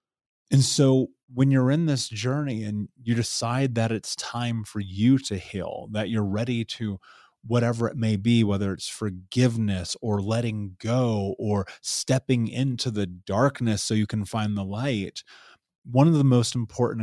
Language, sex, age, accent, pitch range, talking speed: English, male, 30-49, American, 100-125 Hz, 165 wpm